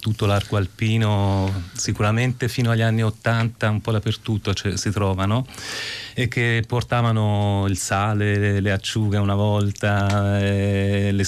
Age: 30-49